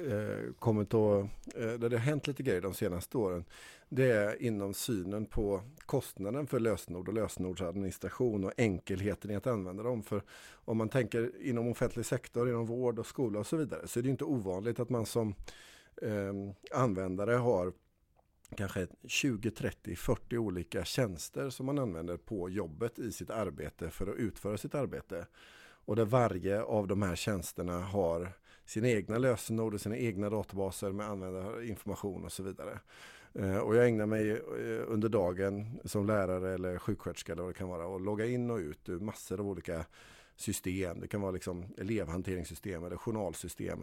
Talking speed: 155 wpm